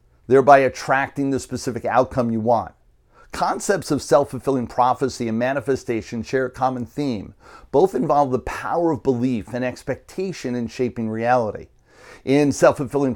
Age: 40-59